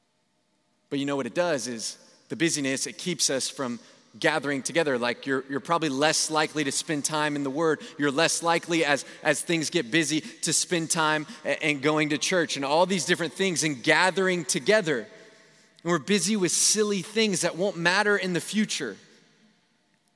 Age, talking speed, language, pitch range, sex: 20-39, 185 wpm, English, 140-195 Hz, male